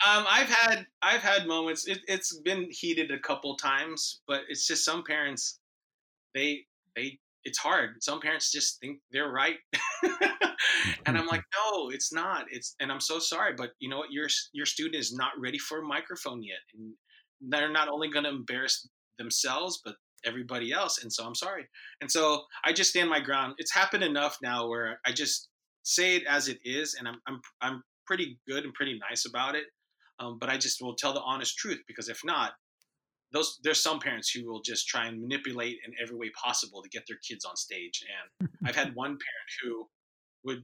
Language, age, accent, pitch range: English, 20-39, American, 125-185 Hz